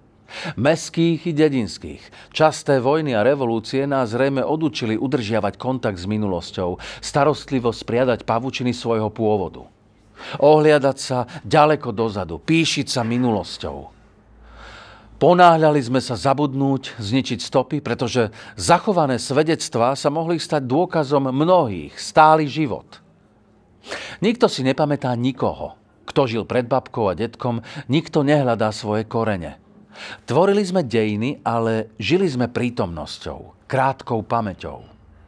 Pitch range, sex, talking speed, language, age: 110-150 Hz, male, 110 wpm, Slovak, 40-59